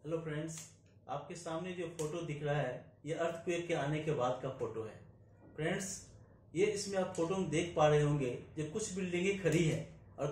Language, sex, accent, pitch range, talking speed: Hindi, male, native, 150-195 Hz, 200 wpm